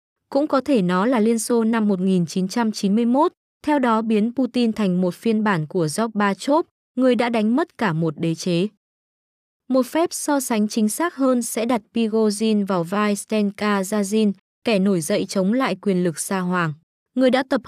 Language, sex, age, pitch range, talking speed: Vietnamese, female, 20-39, 190-245 Hz, 180 wpm